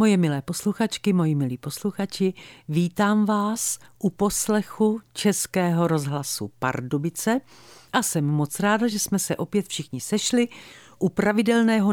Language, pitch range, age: Czech, 145-215 Hz, 50-69